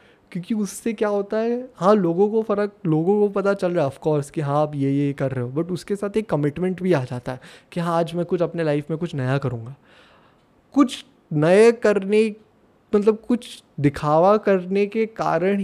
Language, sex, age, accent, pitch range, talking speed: Hindi, male, 20-39, native, 140-185 Hz, 200 wpm